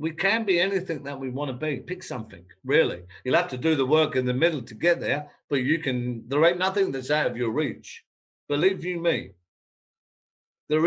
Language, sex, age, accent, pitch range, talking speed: English, male, 50-69, British, 125-170 Hz, 215 wpm